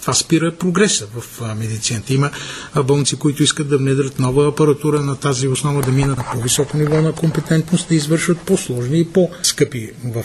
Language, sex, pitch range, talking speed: Bulgarian, male, 130-180 Hz, 170 wpm